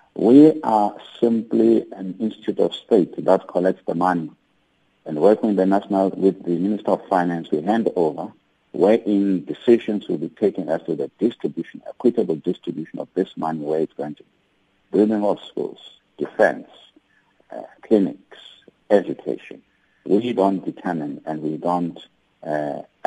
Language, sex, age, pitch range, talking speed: English, male, 50-69, 85-105 Hz, 140 wpm